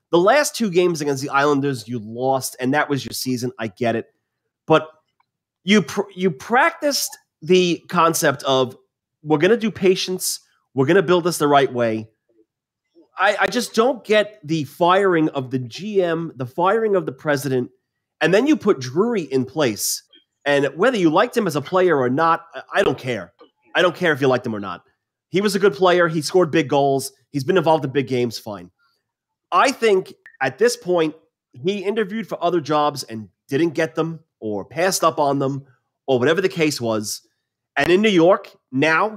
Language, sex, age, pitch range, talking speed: English, male, 30-49, 130-195 Hz, 195 wpm